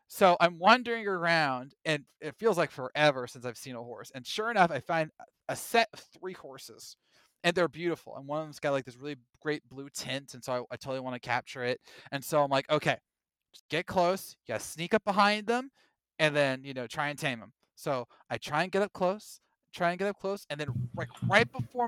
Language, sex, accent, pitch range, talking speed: English, male, American, 145-195 Hz, 235 wpm